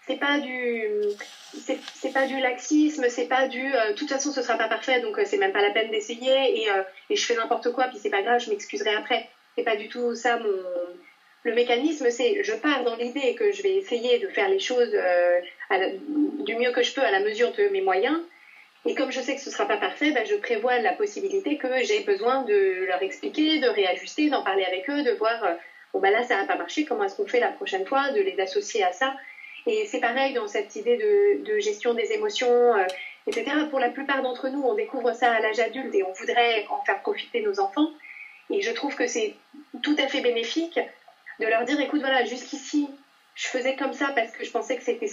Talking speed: 240 wpm